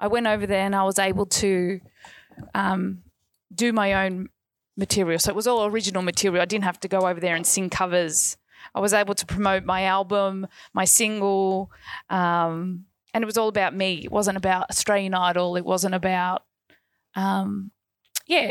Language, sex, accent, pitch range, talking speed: English, female, Australian, 185-215 Hz, 180 wpm